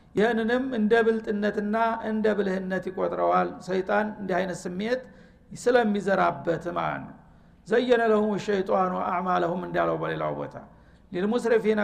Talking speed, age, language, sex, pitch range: 100 wpm, 60-79, Amharic, male, 190-225 Hz